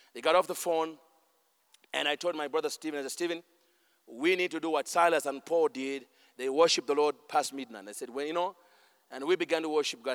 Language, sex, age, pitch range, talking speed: English, male, 40-59, 155-185 Hz, 235 wpm